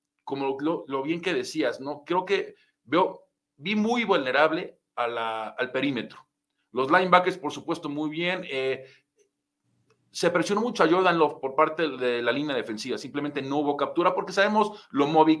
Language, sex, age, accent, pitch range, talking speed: Spanish, male, 40-59, Mexican, 135-180 Hz, 170 wpm